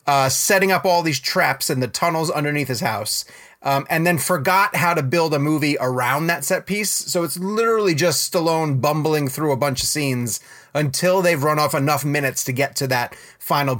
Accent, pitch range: American, 145-195 Hz